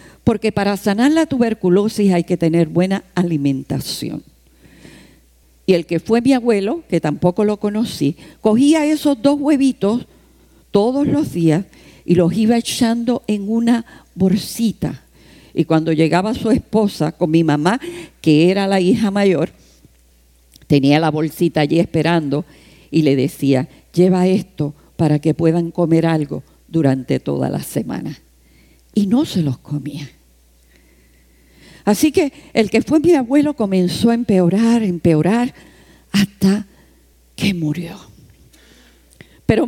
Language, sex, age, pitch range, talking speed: English, female, 50-69, 165-235 Hz, 130 wpm